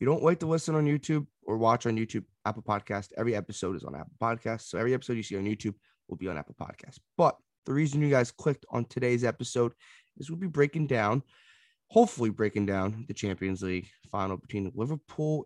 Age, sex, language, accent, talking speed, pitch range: 20-39, male, English, American, 215 wpm, 105-145 Hz